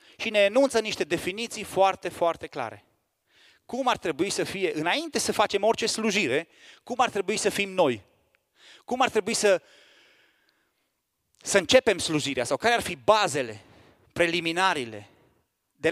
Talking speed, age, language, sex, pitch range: 145 wpm, 30-49, Romanian, male, 125-185 Hz